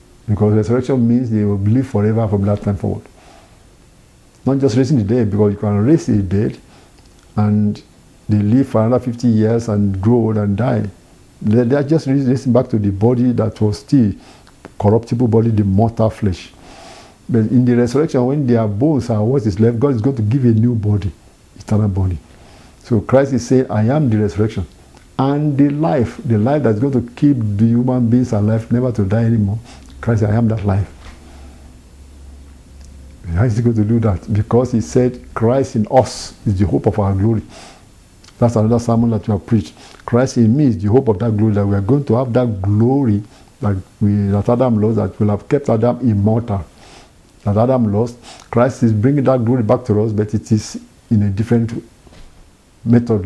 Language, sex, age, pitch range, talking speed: English, male, 60-79, 105-125 Hz, 195 wpm